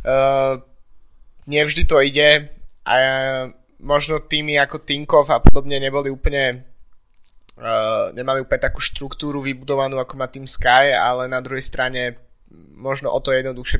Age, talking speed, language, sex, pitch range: 20-39, 145 wpm, Slovak, male, 125-140 Hz